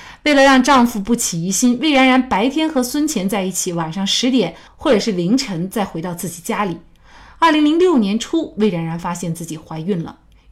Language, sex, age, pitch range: Chinese, female, 30-49, 180-255 Hz